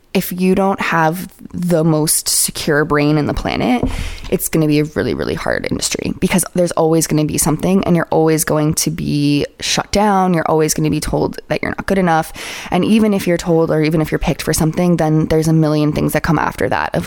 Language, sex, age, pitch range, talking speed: English, female, 20-39, 150-180 Hz, 240 wpm